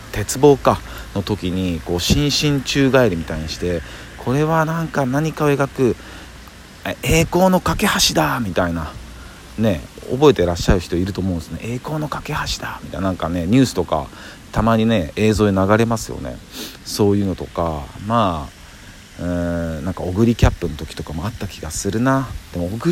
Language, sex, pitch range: Japanese, male, 85-120 Hz